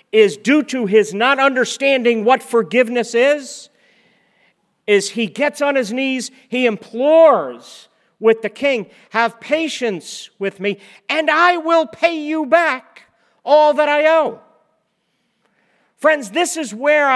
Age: 50-69